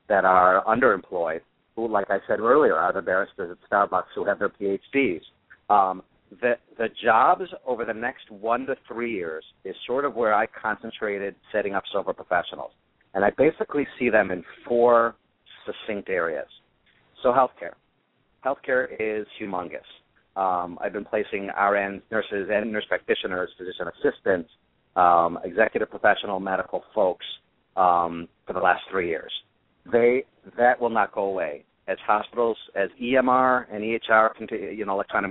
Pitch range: 95-115 Hz